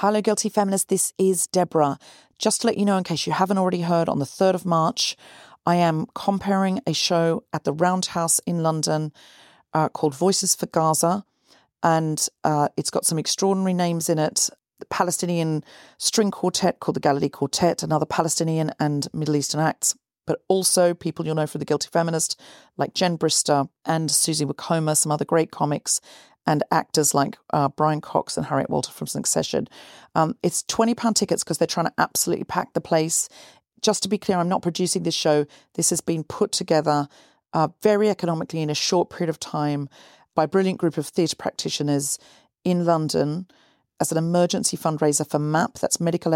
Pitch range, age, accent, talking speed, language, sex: 155-180 Hz, 40-59, British, 185 wpm, English, female